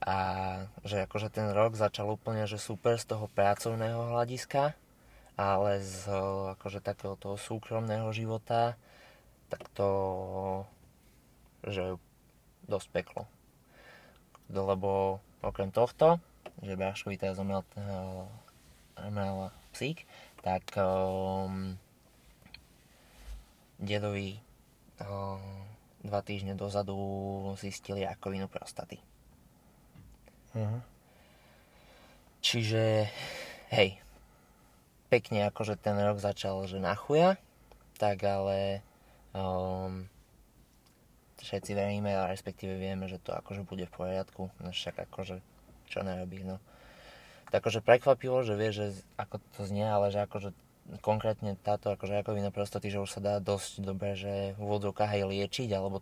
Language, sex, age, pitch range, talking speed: Slovak, male, 20-39, 95-105 Hz, 105 wpm